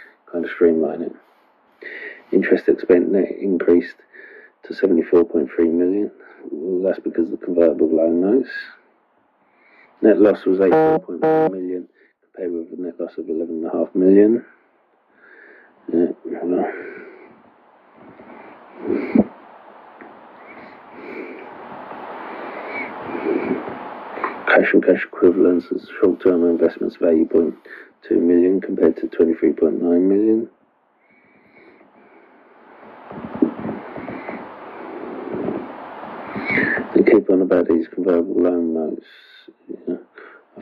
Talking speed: 80 wpm